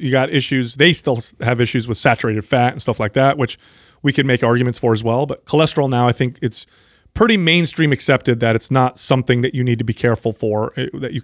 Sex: male